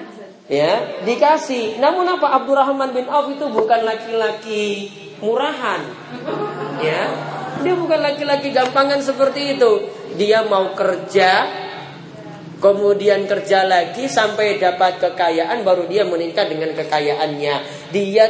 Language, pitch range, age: Malay, 160-240 Hz, 30-49